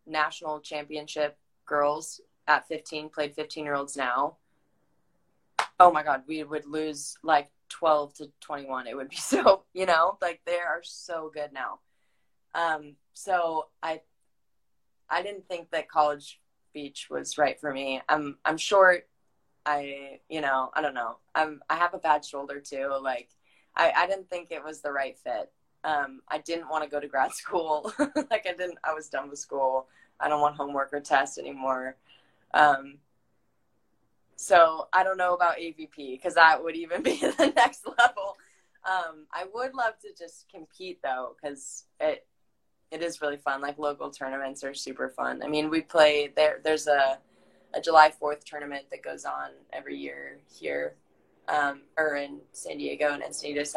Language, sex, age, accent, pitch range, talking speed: English, female, 20-39, American, 135-160 Hz, 170 wpm